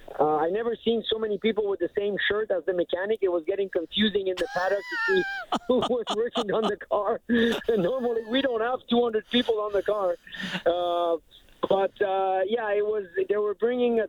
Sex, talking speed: male, 215 wpm